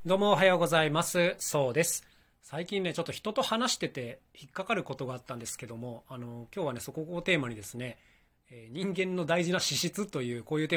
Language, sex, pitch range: Japanese, male, 120-175 Hz